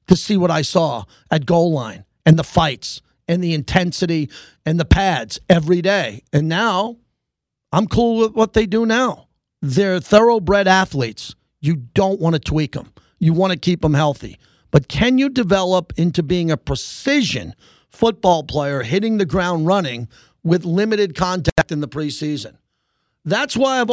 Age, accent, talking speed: 40-59, American, 165 wpm